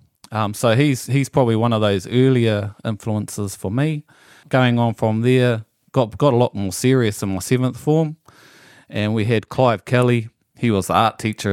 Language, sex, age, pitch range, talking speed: English, male, 30-49, 100-125 Hz, 185 wpm